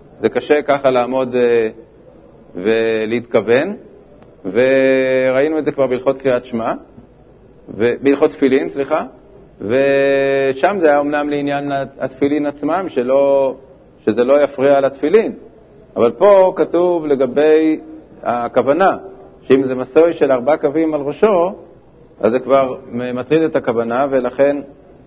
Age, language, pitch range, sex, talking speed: 40-59, Hebrew, 125-155 Hz, male, 105 wpm